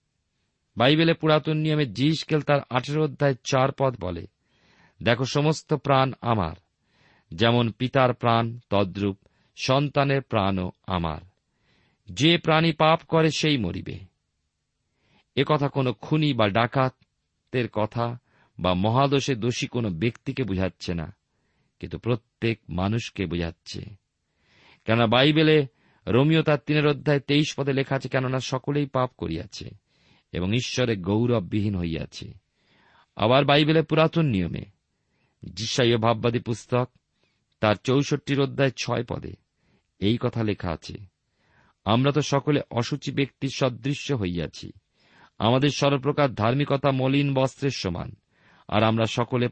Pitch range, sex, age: 105-140 Hz, male, 50-69